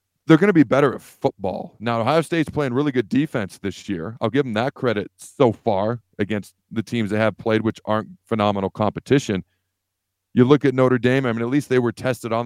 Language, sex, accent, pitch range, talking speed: English, male, American, 105-125 Hz, 220 wpm